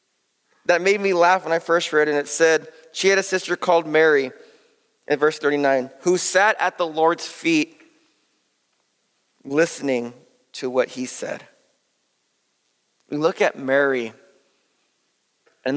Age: 30-49